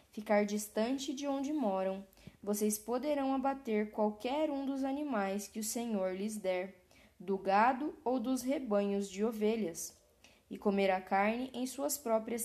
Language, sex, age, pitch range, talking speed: Portuguese, female, 10-29, 200-255 Hz, 150 wpm